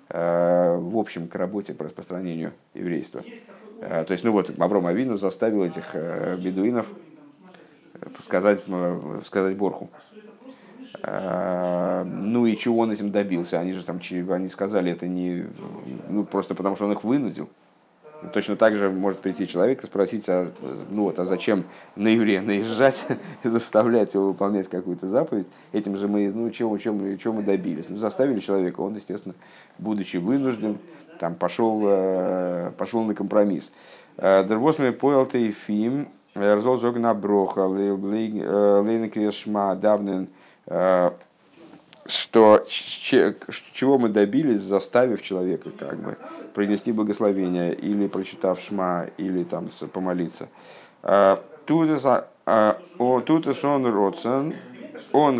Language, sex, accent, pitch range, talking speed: Russian, male, native, 95-115 Hz, 125 wpm